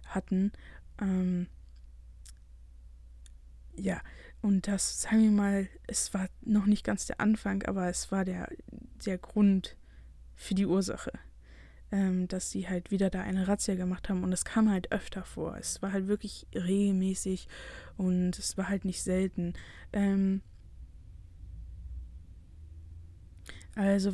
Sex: female